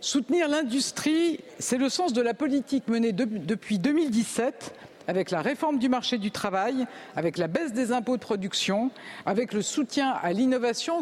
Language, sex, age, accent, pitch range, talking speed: French, female, 50-69, French, 215-275 Hz, 170 wpm